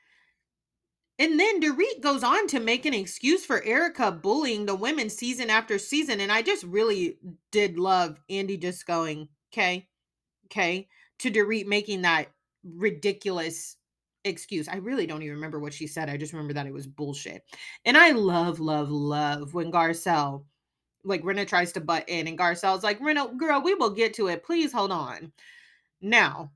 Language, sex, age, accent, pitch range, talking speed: English, female, 30-49, American, 165-225 Hz, 170 wpm